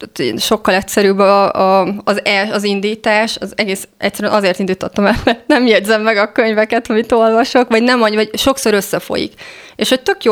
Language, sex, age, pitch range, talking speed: Hungarian, female, 20-39, 195-230 Hz, 175 wpm